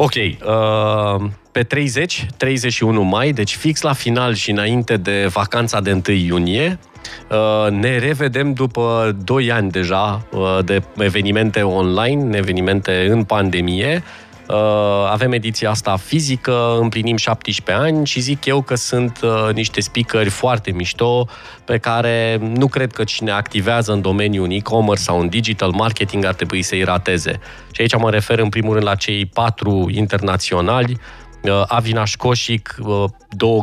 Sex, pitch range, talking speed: male, 100-120 Hz, 135 wpm